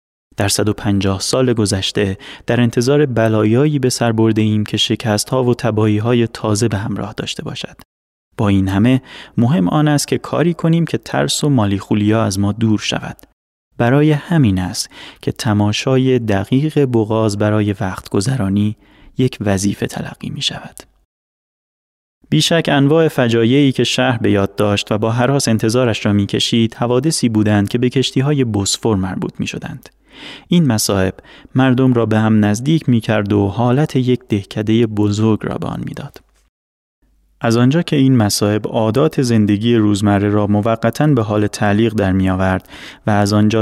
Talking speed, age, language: 155 wpm, 30-49, Persian